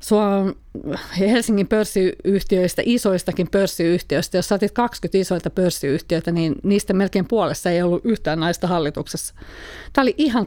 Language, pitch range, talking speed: Finnish, 175-210 Hz, 120 wpm